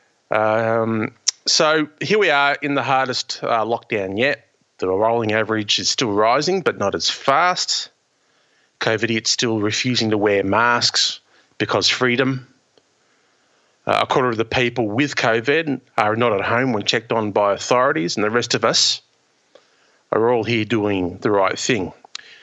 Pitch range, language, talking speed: 110-130 Hz, English, 160 wpm